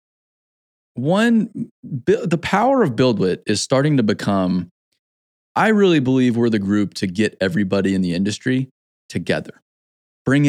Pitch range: 105-130 Hz